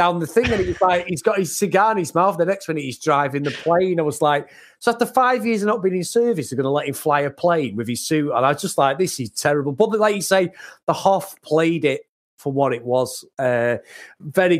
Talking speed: 265 wpm